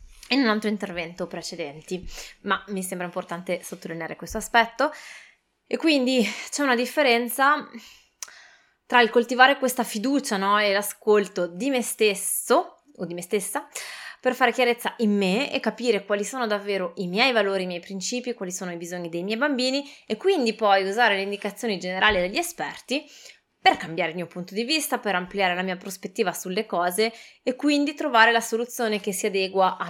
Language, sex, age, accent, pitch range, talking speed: Italian, female, 20-39, native, 185-240 Hz, 175 wpm